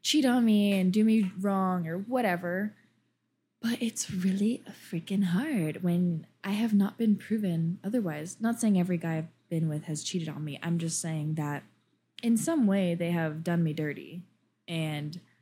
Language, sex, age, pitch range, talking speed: English, female, 20-39, 165-200 Hz, 175 wpm